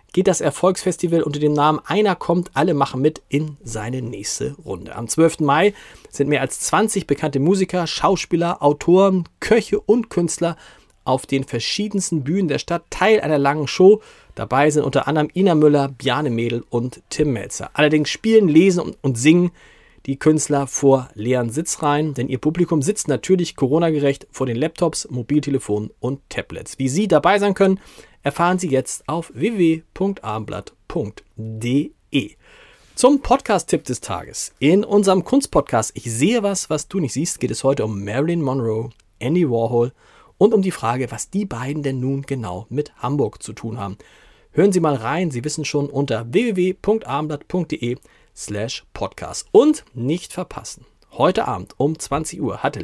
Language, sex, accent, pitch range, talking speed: German, male, German, 130-180 Hz, 155 wpm